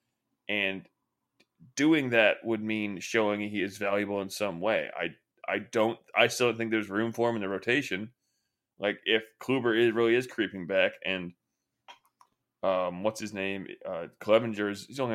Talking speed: 185 wpm